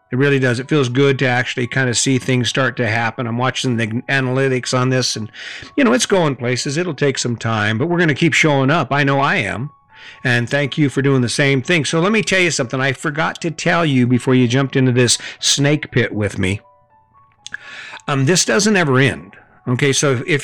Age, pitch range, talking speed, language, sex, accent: 50-69, 125-155 Hz, 230 wpm, English, male, American